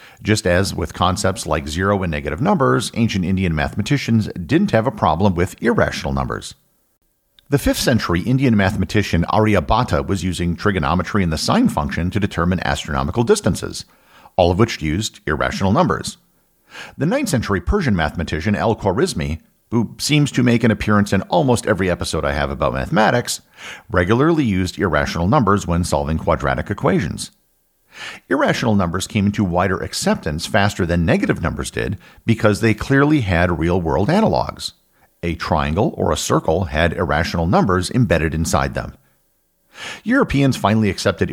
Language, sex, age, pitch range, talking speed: English, male, 50-69, 85-110 Hz, 150 wpm